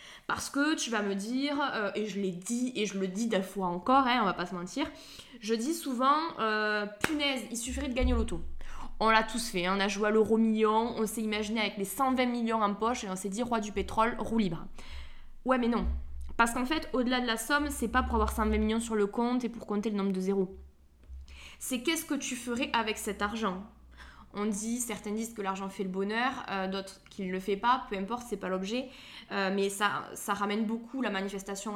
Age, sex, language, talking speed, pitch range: 20-39, female, French, 240 wpm, 195-245 Hz